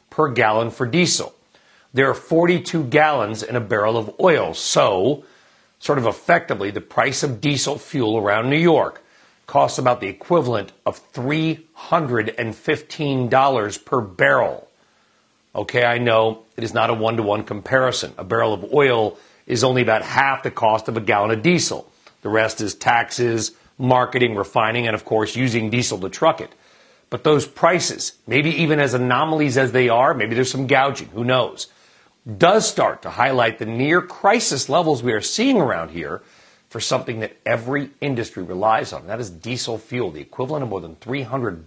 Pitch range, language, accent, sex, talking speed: 115-150 Hz, English, American, male, 170 wpm